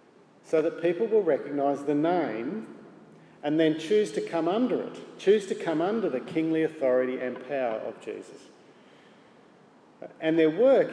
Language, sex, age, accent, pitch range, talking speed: English, male, 50-69, Australian, 145-195 Hz, 155 wpm